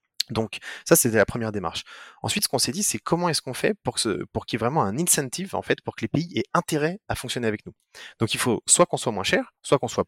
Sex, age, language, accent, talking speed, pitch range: male, 20-39, French, French, 285 wpm, 105-135 Hz